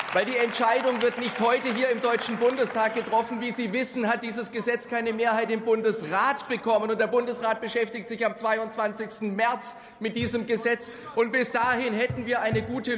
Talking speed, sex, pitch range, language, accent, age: 180 wpm, male, 200-240 Hz, German, German, 40-59